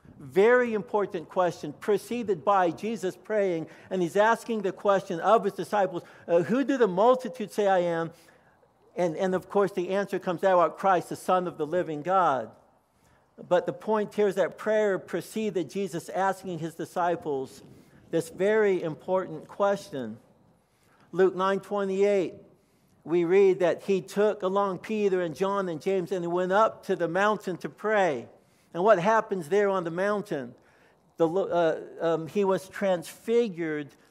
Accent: American